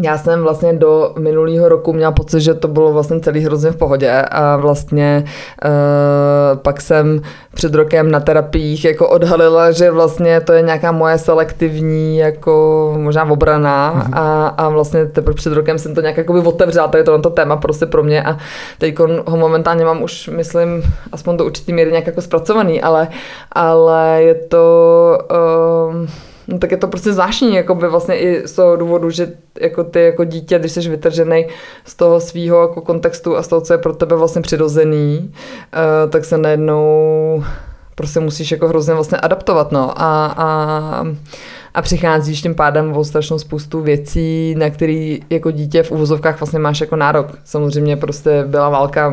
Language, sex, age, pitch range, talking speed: Czech, female, 20-39, 155-170 Hz, 175 wpm